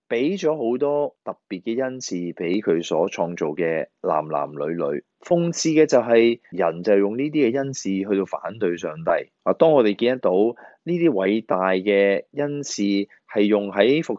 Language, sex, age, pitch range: Chinese, male, 20-39, 95-125 Hz